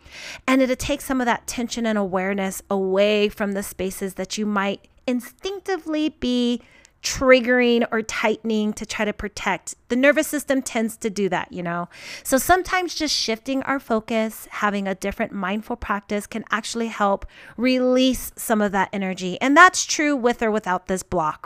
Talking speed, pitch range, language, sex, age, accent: 170 wpm, 195-250 Hz, English, female, 30-49, American